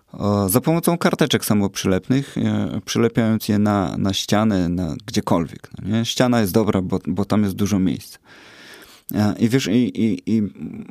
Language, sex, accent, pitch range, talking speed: Polish, male, native, 100-120 Hz, 145 wpm